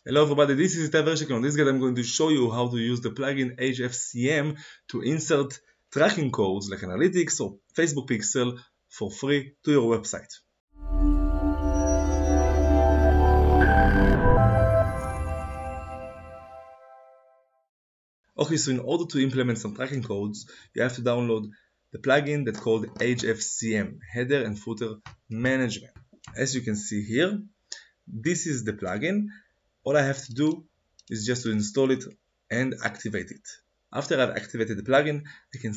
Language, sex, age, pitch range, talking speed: Hebrew, male, 20-39, 110-135 Hz, 145 wpm